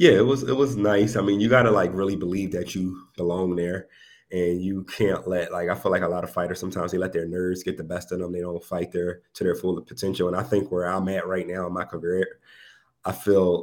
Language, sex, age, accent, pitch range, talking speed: English, male, 30-49, American, 85-95 Hz, 270 wpm